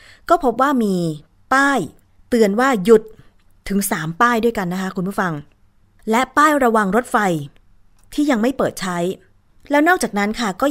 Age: 20-39